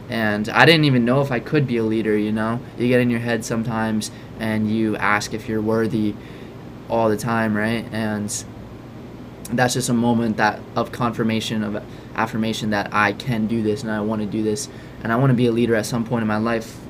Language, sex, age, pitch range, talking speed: English, male, 20-39, 110-130 Hz, 225 wpm